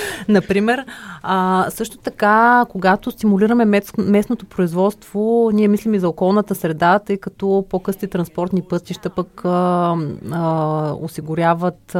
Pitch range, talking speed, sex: 155-190 Hz, 100 wpm, female